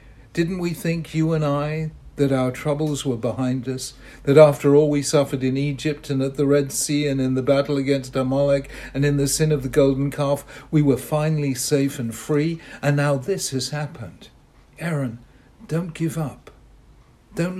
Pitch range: 125-155 Hz